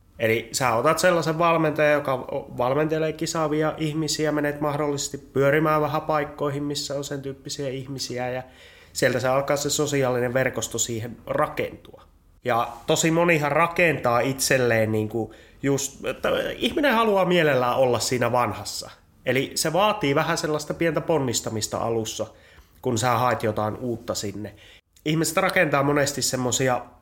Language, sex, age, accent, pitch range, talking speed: Finnish, male, 30-49, native, 115-150 Hz, 135 wpm